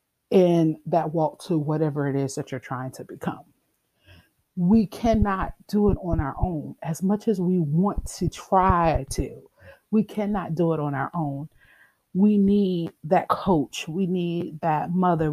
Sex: female